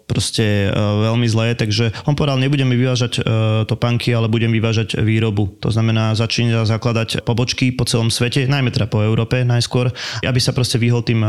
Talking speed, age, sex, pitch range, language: 170 wpm, 20-39, male, 110-125 Hz, Slovak